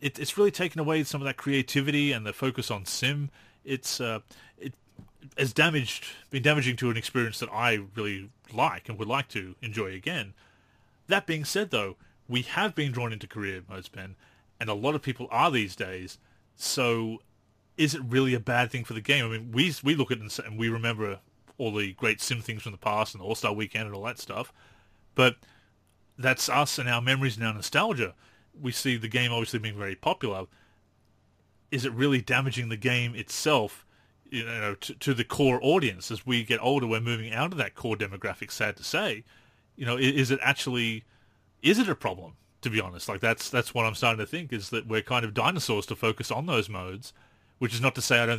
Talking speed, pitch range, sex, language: 210 wpm, 105-130 Hz, male, English